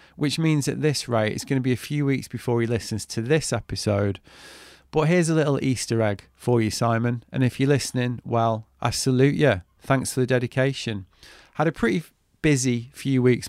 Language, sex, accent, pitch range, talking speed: English, male, British, 115-135 Hz, 200 wpm